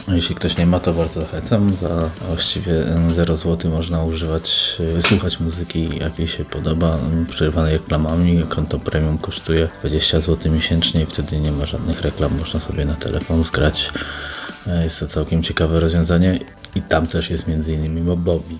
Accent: native